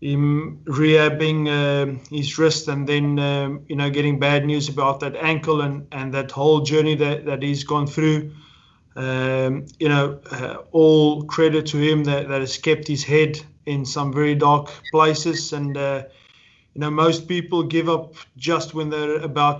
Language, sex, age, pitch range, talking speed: English, male, 20-39, 140-155 Hz, 175 wpm